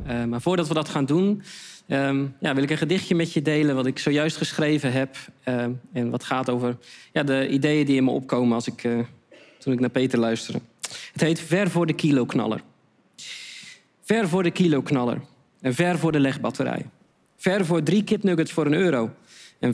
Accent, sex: Dutch, male